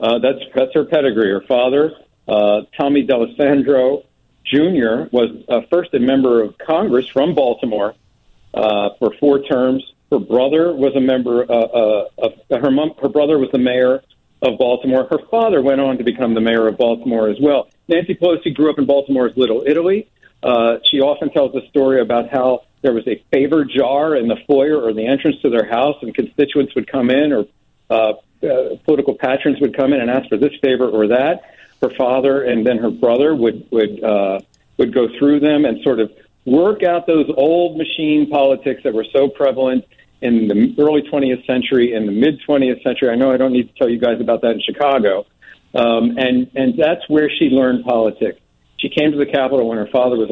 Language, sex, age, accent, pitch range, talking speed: English, male, 50-69, American, 115-145 Hz, 200 wpm